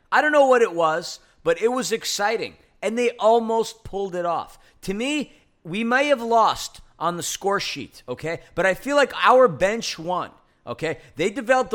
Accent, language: American, English